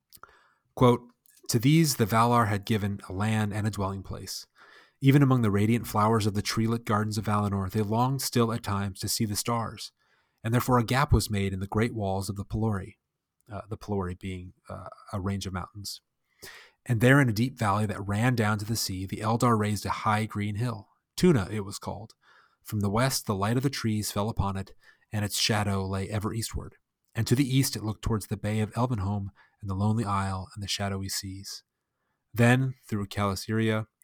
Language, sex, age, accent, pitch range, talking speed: English, male, 30-49, American, 100-115 Hz, 205 wpm